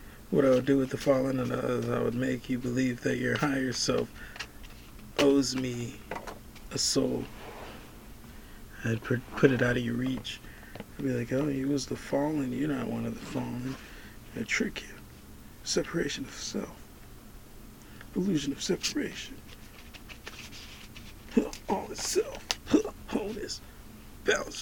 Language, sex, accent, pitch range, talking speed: English, male, American, 120-145 Hz, 140 wpm